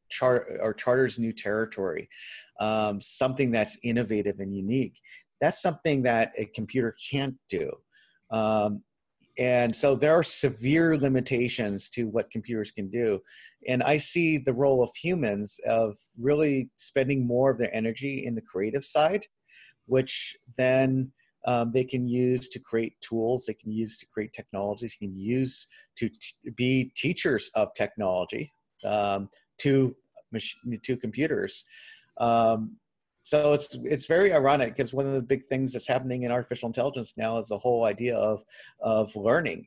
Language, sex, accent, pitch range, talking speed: English, male, American, 110-140 Hz, 150 wpm